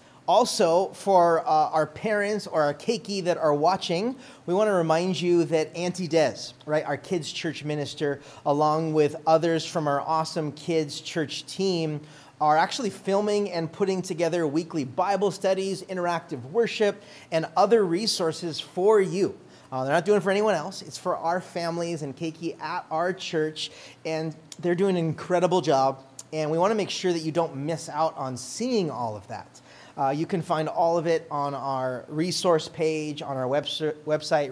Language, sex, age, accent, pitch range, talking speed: English, male, 30-49, American, 140-175 Hz, 175 wpm